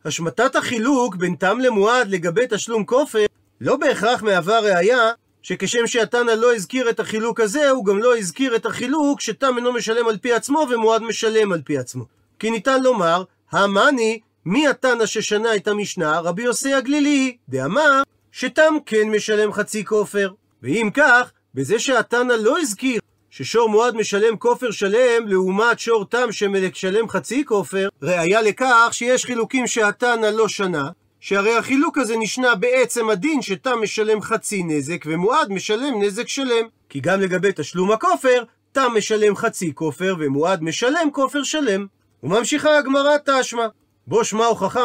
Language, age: Hebrew, 40-59